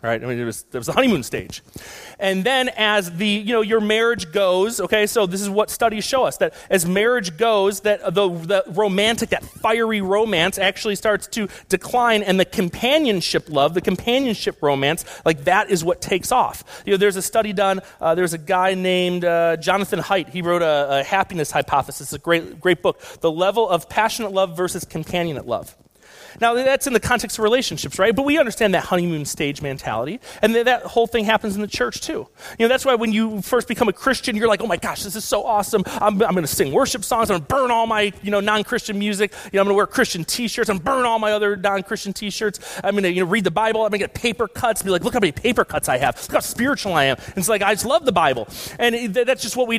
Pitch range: 185-230 Hz